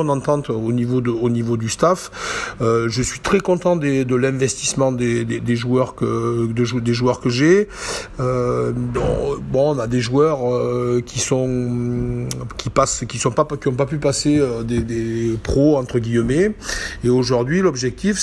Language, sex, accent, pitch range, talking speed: French, male, French, 120-145 Hz, 170 wpm